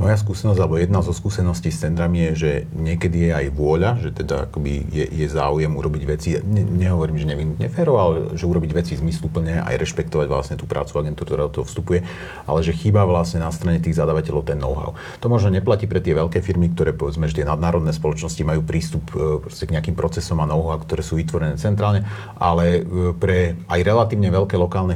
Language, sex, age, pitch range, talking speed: Slovak, male, 40-59, 80-95 Hz, 190 wpm